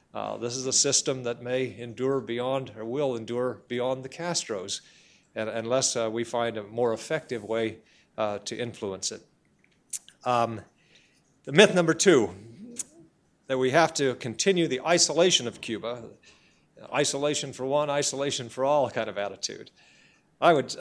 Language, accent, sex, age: English, American, male, 50-69